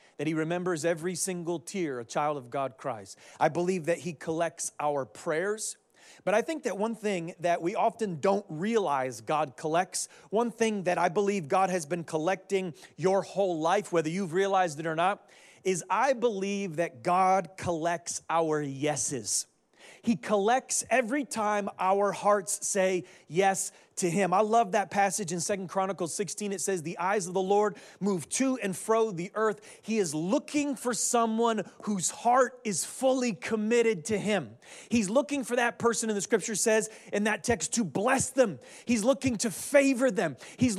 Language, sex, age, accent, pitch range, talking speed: English, male, 30-49, American, 175-235 Hz, 180 wpm